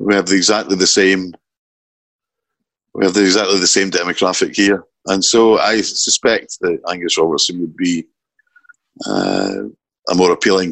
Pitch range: 90-125 Hz